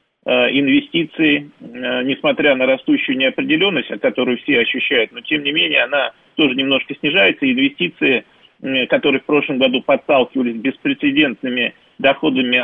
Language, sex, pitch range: Russian, male, 130-155 Hz